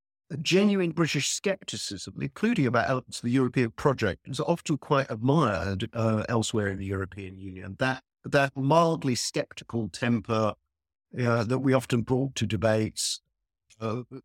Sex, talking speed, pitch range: male, 145 wpm, 105-135 Hz